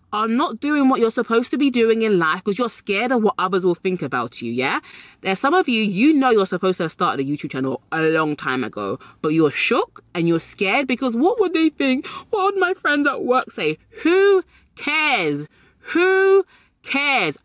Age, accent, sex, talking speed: 20-39, British, female, 210 wpm